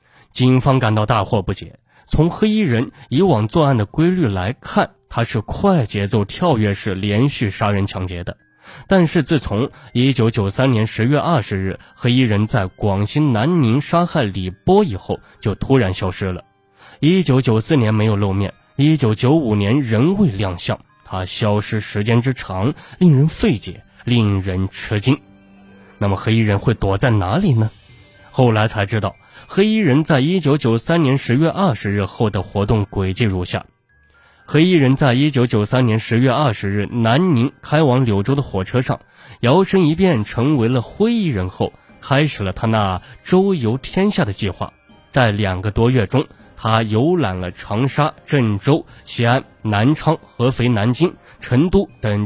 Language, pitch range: Chinese, 105-145 Hz